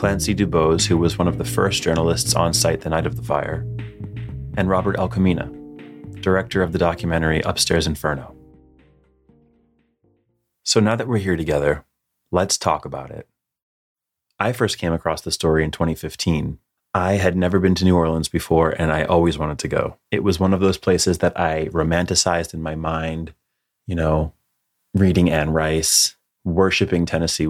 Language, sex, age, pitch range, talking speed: English, male, 30-49, 80-95 Hz, 165 wpm